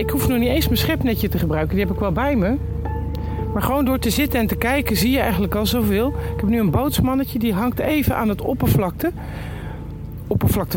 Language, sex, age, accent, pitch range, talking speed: Dutch, male, 50-69, Dutch, 160-235 Hz, 225 wpm